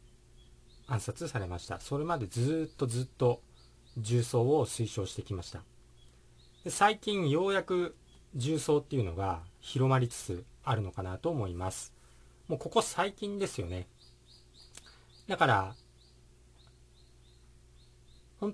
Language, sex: Japanese, male